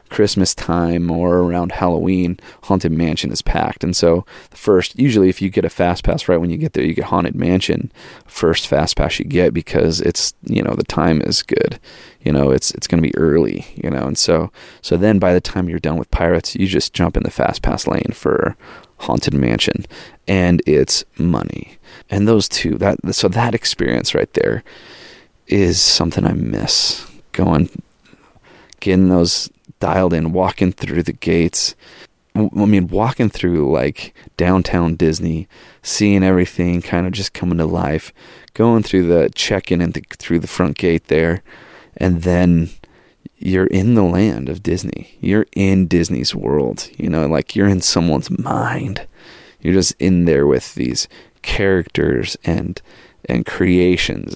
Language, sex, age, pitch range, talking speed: English, male, 30-49, 85-95 Hz, 170 wpm